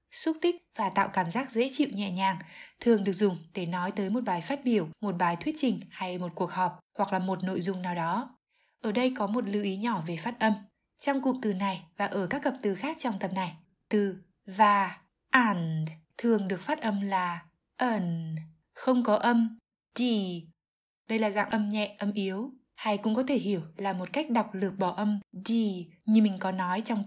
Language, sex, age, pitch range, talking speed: Vietnamese, female, 20-39, 190-230 Hz, 215 wpm